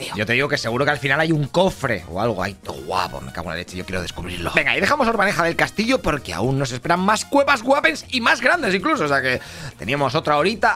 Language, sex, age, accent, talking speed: Spanish, male, 30-49, Spanish, 270 wpm